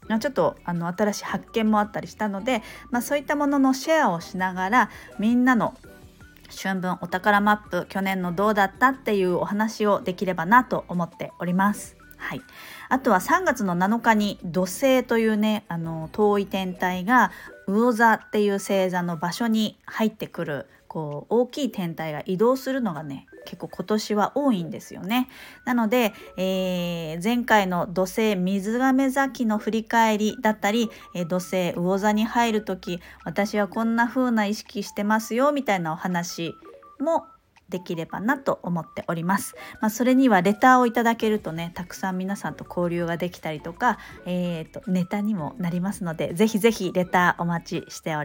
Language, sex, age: Japanese, female, 40-59